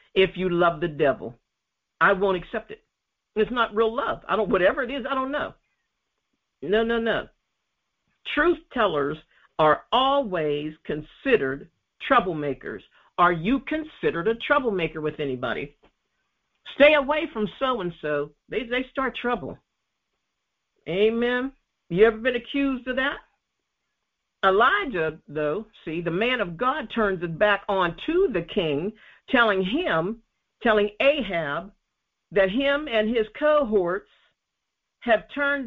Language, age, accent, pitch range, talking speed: English, 50-69, American, 175-270 Hz, 135 wpm